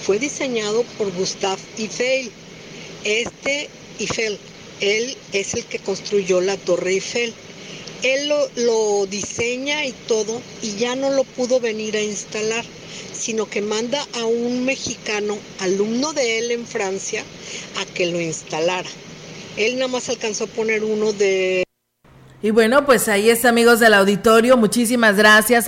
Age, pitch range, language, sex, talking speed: 50-69, 200-235 Hz, Spanish, female, 145 wpm